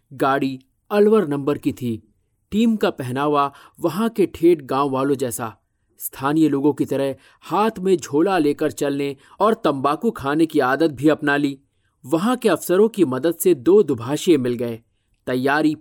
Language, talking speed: Hindi, 160 wpm